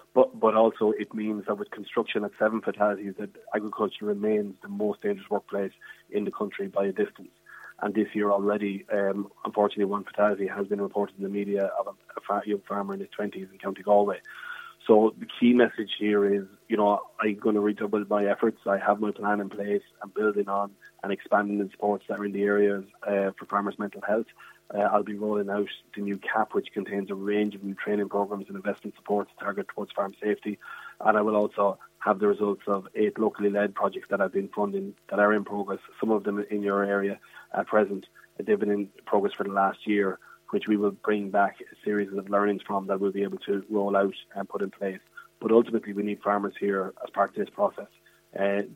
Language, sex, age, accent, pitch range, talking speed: English, male, 20-39, Irish, 100-105 Hz, 220 wpm